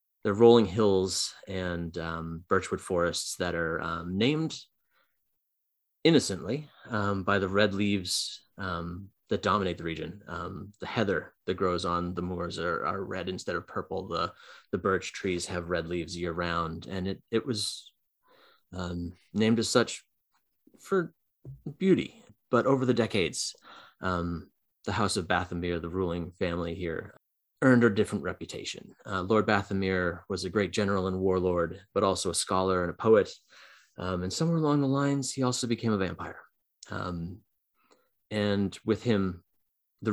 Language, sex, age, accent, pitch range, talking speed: English, male, 30-49, American, 85-105 Hz, 160 wpm